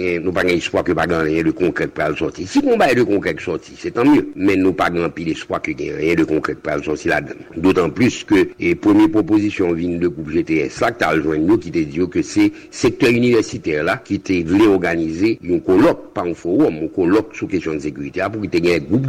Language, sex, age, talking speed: English, male, 60-79, 245 wpm